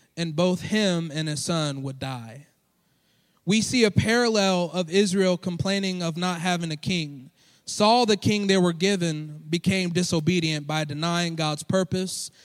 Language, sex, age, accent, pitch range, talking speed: English, male, 20-39, American, 155-195 Hz, 155 wpm